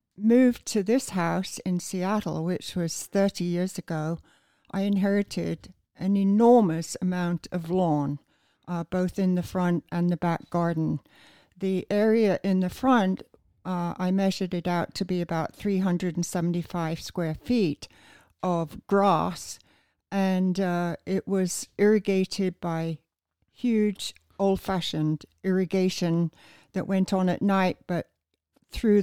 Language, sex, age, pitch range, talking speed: English, female, 60-79, 170-195 Hz, 125 wpm